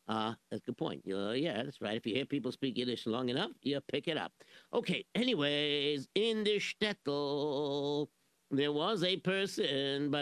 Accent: American